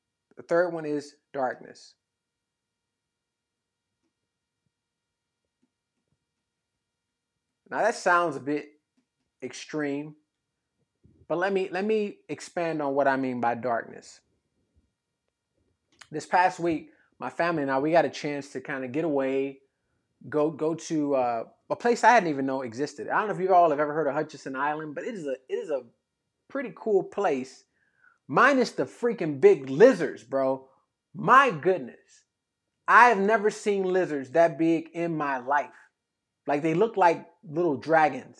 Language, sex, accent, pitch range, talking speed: English, male, American, 140-185 Hz, 150 wpm